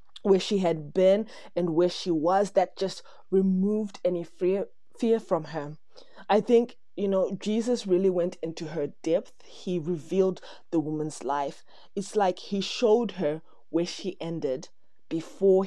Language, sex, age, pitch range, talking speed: English, female, 20-39, 160-195 Hz, 155 wpm